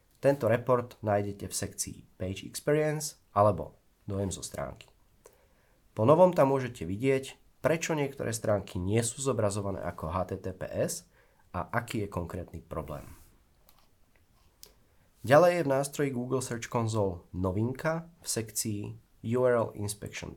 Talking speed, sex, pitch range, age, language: 120 wpm, male, 95-130 Hz, 30-49, Czech